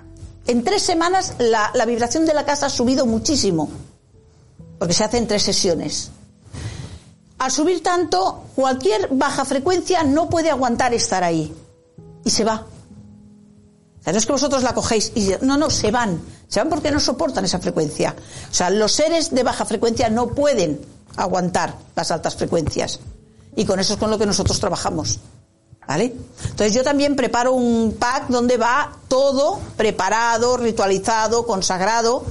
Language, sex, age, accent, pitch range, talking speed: Spanish, female, 50-69, Spanish, 200-275 Hz, 155 wpm